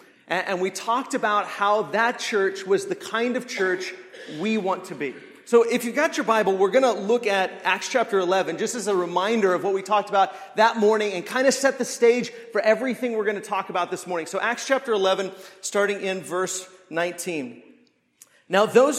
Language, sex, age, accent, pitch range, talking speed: English, male, 40-59, American, 185-235 Hz, 210 wpm